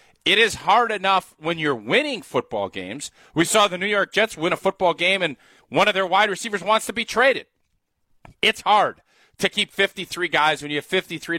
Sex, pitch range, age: male, 155-200 Hz, 40-59